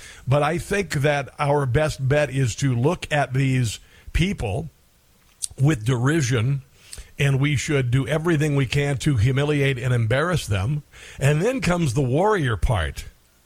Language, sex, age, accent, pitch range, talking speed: English, male, 50-69, American, 130-165 Hz, 145 wpm